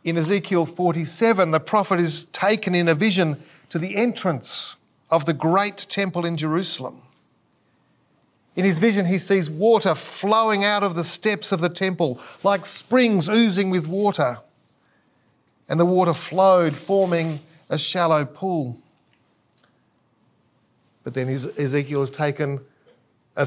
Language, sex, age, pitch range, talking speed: English, male, 40-59, 160-220 Hz, 135 wpm